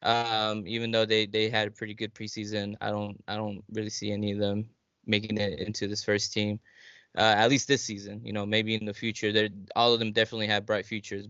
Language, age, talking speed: English, 10-29, 235 wpm